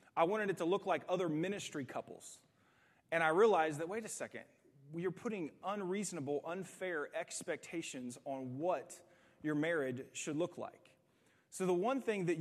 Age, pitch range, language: 30-49, 145-190 Hz, English